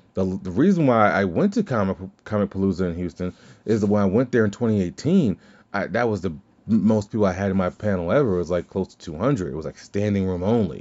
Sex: male